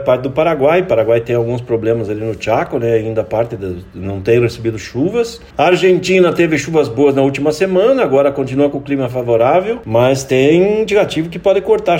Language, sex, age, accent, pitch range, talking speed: Portuguese, male, 50-69, Brazilian, 120-175 Hz, 190 wpm